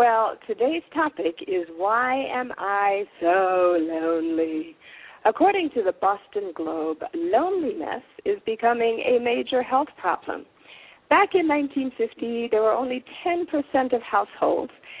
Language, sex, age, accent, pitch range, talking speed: English, female, 50-69, American, 215-325 Hz, 120 wpm